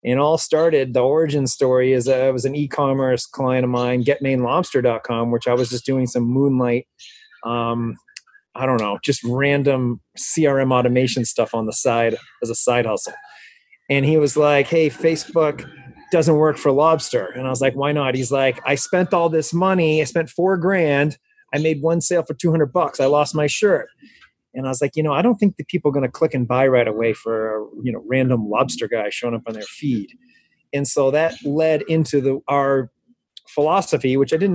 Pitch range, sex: 130-160 Hz, male